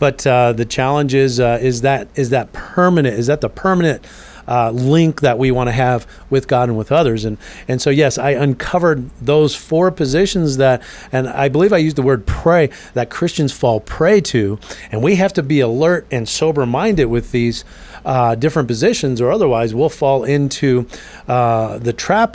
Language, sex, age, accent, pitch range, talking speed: English, male, 40-59, American, 120-155 Hz, 180 wpm